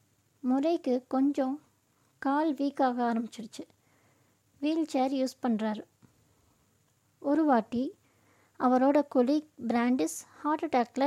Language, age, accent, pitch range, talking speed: Tamil, 20-39, native, 230-280 Hz, 85 wpm